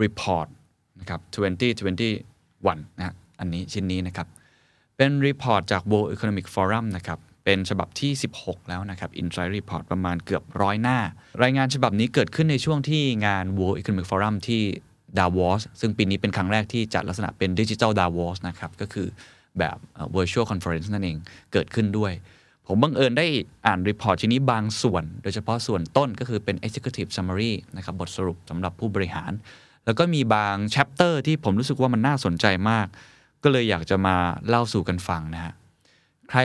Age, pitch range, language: 20-39, 90-115 Hz, Thai